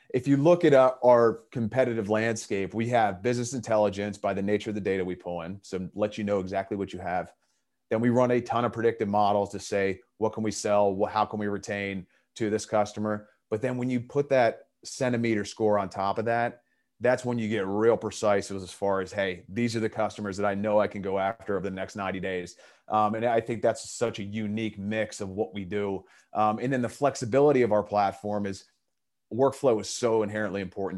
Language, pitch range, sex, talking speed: English, 95-110 Hz, male, 220 wpm